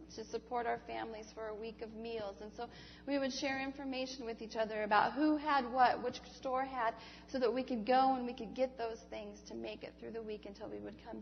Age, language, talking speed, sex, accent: 40-59, English, 245 wpm, female, American